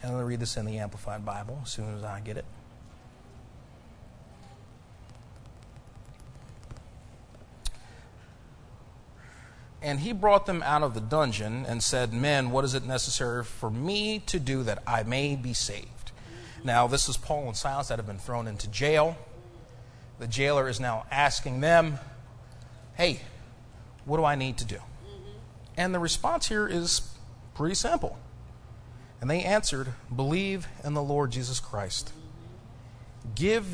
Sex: male